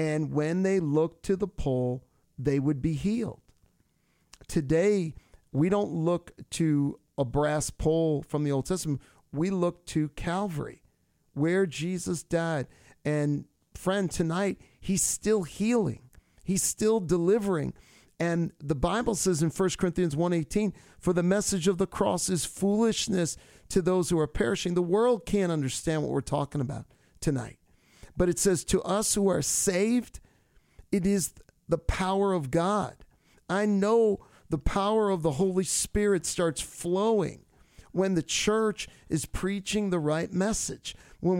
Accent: American